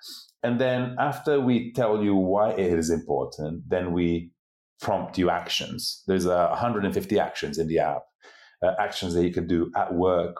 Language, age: English, 30-49